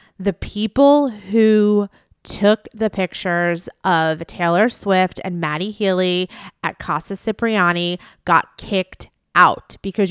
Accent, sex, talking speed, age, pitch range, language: American, female, 115 wpm, 20-39, 180-220 Hz, English